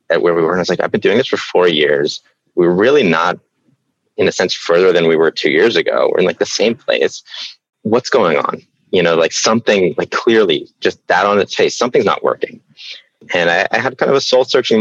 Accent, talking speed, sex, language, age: American, 240 wpm, male, English, 30-49